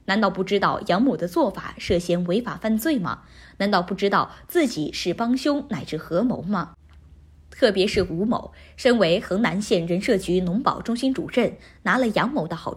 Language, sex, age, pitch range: Chinese, female, 20-39, 175-255 Hz